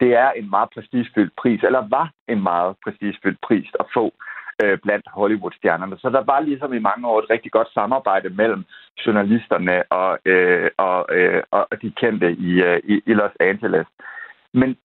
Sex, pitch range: male, 105-135 Hz